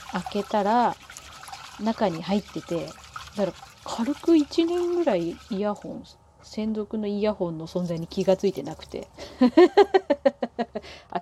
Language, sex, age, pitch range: Japanese, female, 30-49, 185-245 Hz